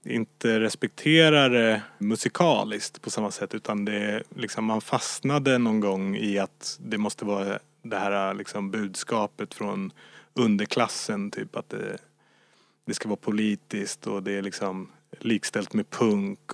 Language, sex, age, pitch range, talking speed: Swedish, male, 30-49, 100-120 Hz, 140 wpm